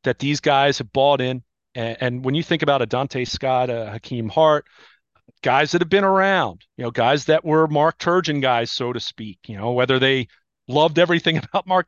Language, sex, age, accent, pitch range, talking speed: English, male, 30-49, American, 125-165 Hz, 215 wpm